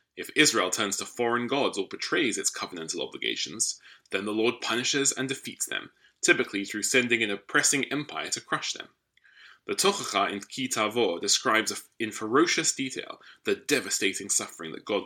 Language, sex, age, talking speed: English, male, 20-39, 165 wpm